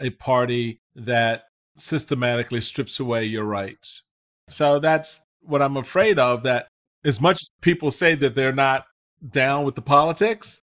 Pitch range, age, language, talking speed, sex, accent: 120-145 Hz, 40-59, English, 150 wpm, male, American